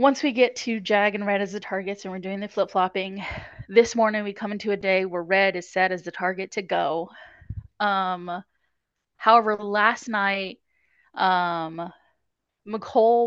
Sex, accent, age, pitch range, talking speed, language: female, American, 20-39, 190-245 Hz, 165 wpm, English